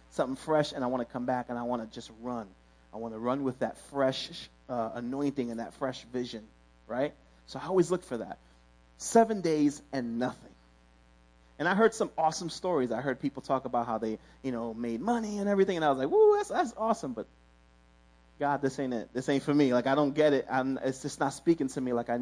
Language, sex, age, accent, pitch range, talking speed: English, male, 30-49, American, 105-150 Hz, 235 wpm